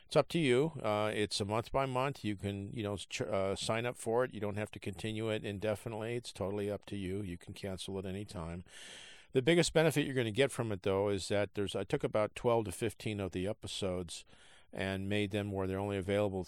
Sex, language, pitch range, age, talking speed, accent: male, English, 95-110 Hz, 50-69, 240 wpm, American